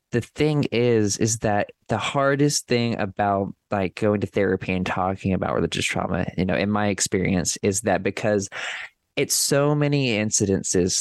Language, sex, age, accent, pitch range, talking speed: English, male, 20-39, American, 100-115 Hz, 165 wpm